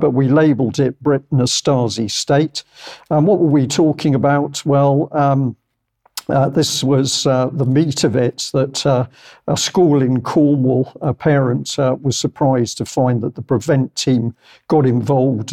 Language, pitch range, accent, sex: English, 125-145 Hz, British, male